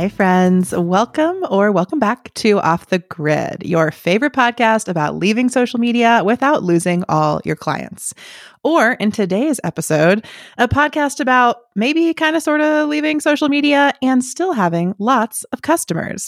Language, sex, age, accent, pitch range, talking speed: English, female, 20-39, American, 175-240 Hz, 160 wpm